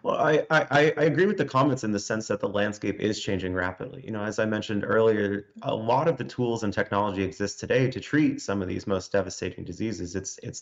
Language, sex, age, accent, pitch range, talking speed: English, male, 30-49, American, 95-115 Hz, 235 wpm